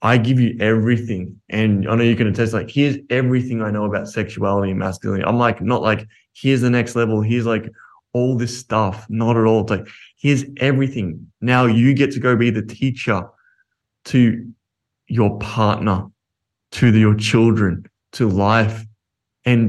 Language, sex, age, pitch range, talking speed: English, male, 20-39, 105-120 Hz, 175 wpm